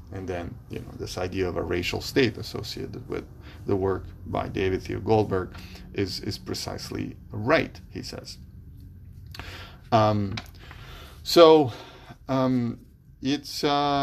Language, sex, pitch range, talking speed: English, male, 95-120 Hz, 115 wpm